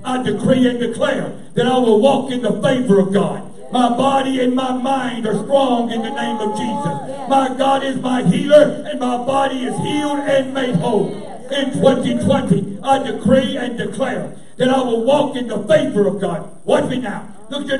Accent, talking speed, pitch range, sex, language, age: American, 195 wpm, 175-255 Hz, male, English, 60-79